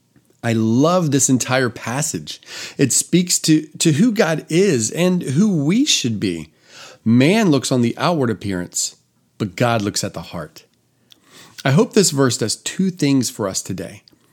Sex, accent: male, American